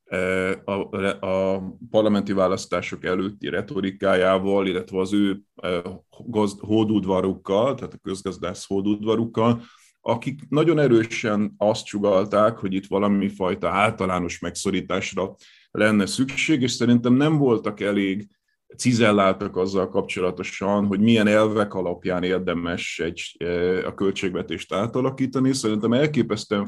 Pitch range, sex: 95-115 Hz, male